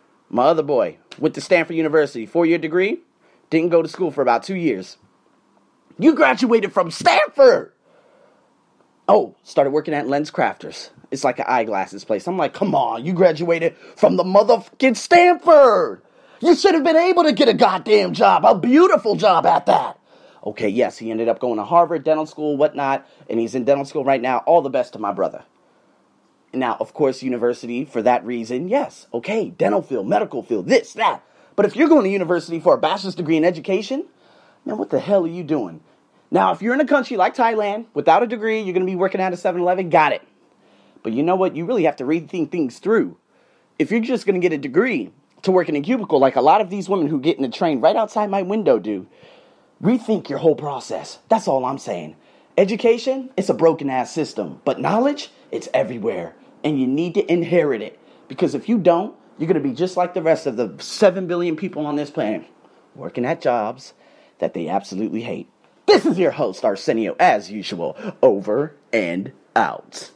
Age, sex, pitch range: 30-49, male, 155-235 Hz